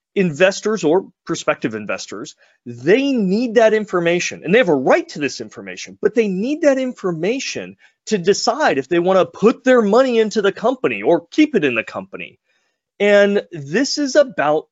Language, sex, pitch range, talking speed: English, male, 170-240 Hz, 170 wpm